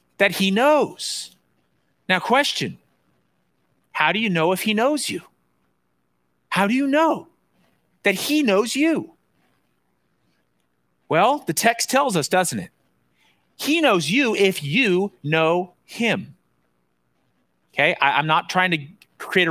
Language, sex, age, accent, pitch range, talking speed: English, male, 40-59, American, 160-245 Hz, 125 wpm